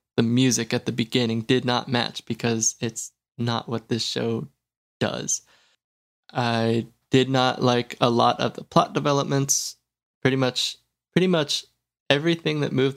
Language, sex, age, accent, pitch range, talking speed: English, male, 20-39, American, 115-130 Hz, 150 wpm